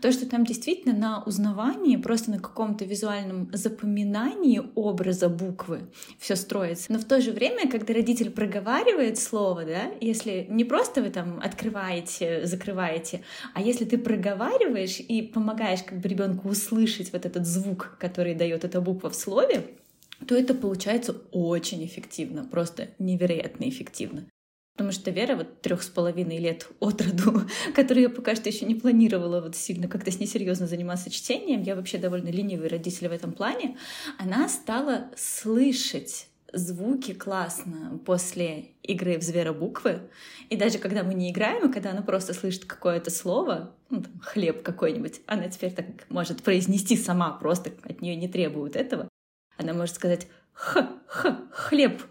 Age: 20-39